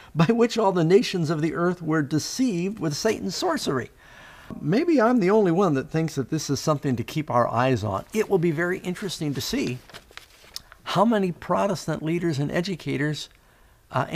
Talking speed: 180 wpm